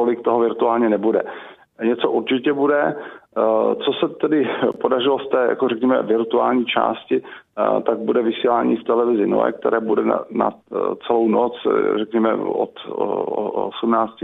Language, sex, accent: Czech, male, native